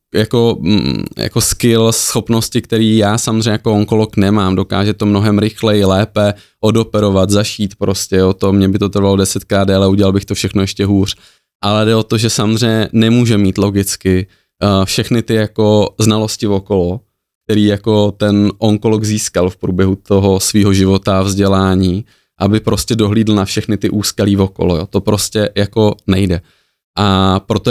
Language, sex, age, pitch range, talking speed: Slovak, male, 20-39, 95-105 Hz, 160 wpm